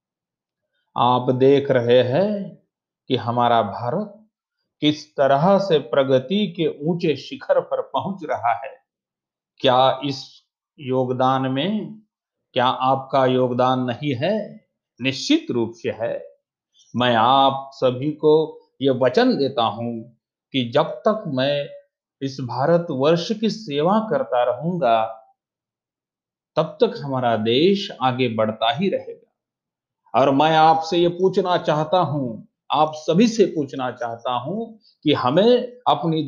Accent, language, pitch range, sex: native, Marathi, 130-210 Hz, male